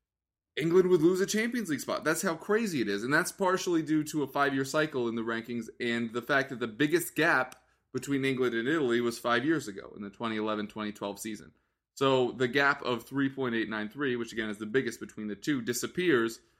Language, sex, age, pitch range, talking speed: English, male, 20-39, 105-135 Hz, 200 wpm